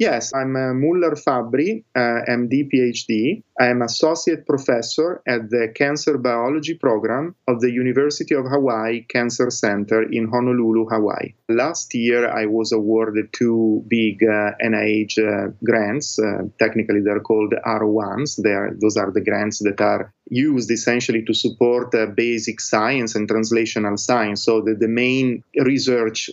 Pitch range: 110-130 Hz